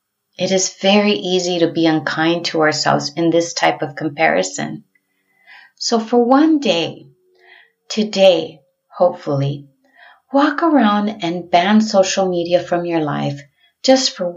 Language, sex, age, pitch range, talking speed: English, female, 30-49, 165-210 Hz, 130 wpm